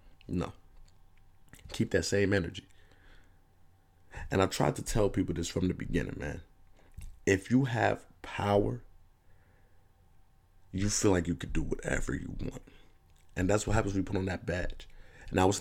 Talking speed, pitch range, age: 160 wpm, 85-100 Hz, 30-49